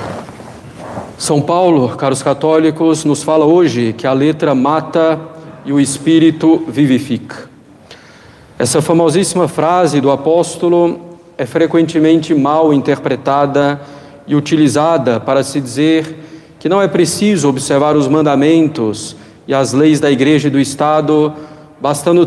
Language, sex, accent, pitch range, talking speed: Portuguese, male, Brazilian, 140-160 Hz, 120 wpm